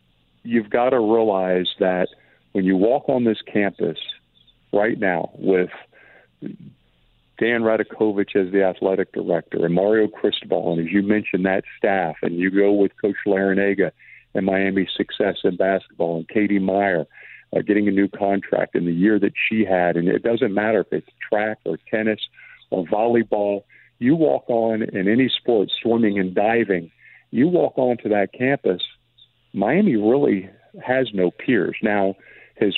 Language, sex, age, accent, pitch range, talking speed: English, male, 50-69, American, 100-120 Hz, 155 wpm